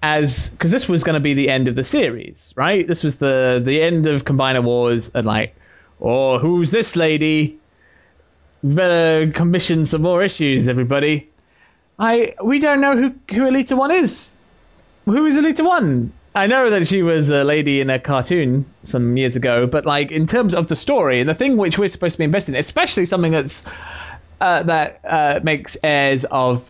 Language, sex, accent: English, male, British